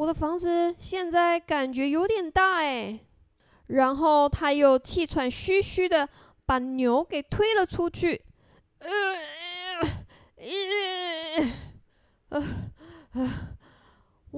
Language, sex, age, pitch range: Chinese, female, 20-39, 255-350 Hz